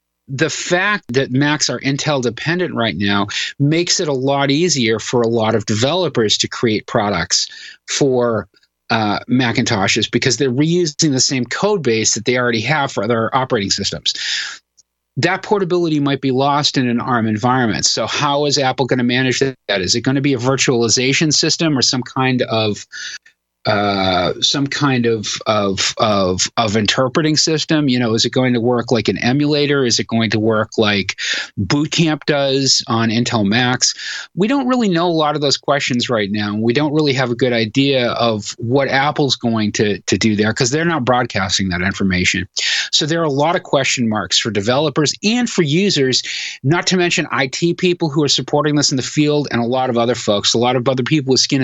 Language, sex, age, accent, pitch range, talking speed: English, male, 40-59, American, 115-150 Hz, 195 wpm